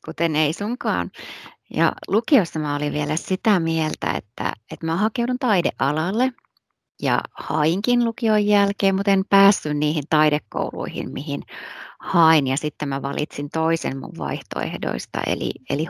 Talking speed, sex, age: 130 wpm, female, 30-49